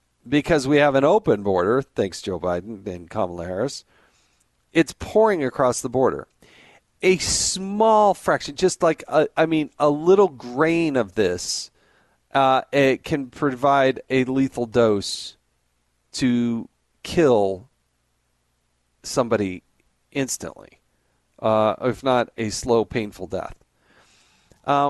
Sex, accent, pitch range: male, American, 100-150 Hz